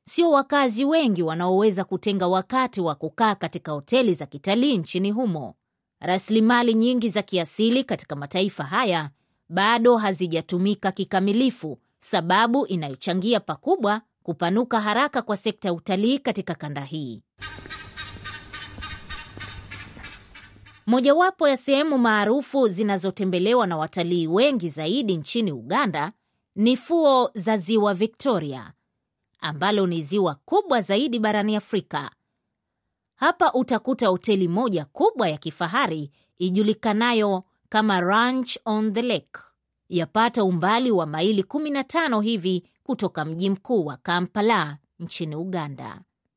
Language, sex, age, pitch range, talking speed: Swahili, female, 30-49, 175-240 Hz, 115 wpm